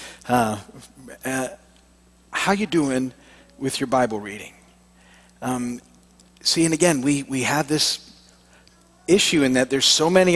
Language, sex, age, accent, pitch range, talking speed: English, male, 50-69, American, 125-170 Hz, 135 wpm